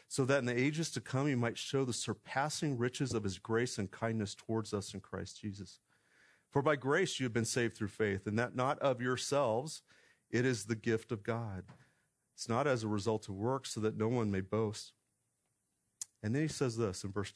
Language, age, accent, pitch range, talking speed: English, 40-59, American, 110-140 Hz, 220 wpm